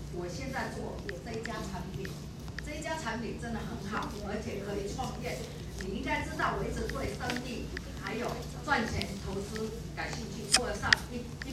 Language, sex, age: Chinese, female, 40-59